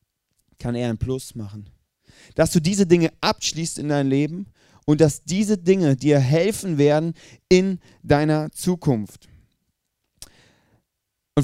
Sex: male